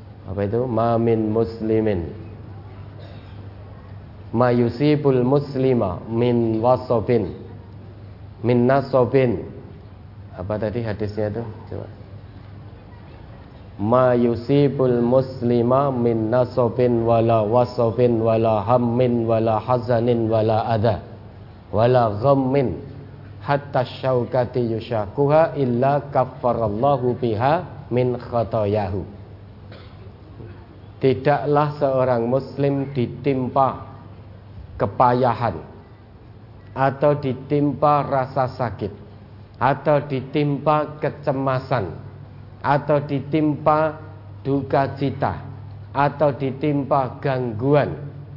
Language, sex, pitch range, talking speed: Indonesian, male, 105-135 Hz, 70 wpm